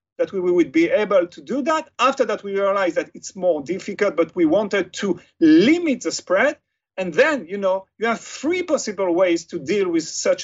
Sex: male